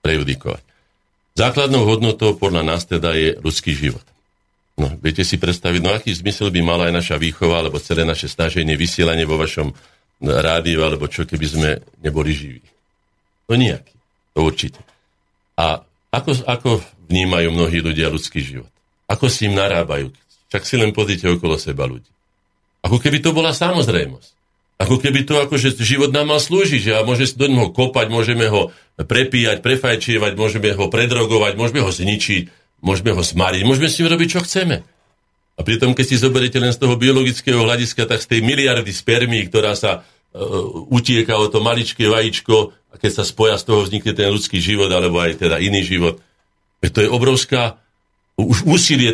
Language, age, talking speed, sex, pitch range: Slovak, 50-69, 165 wpm, male, 85-125 Hz